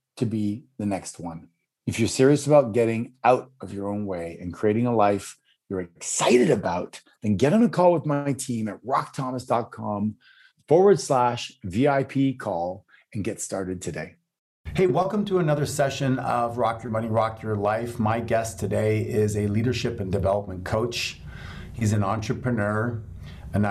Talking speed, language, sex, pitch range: 165 wpm, English, male, 105-130 Hz